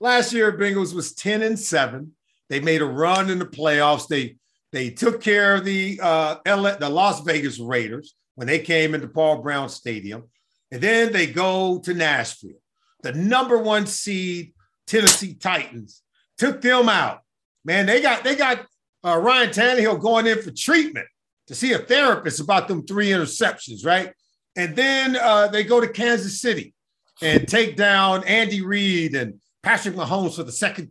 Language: English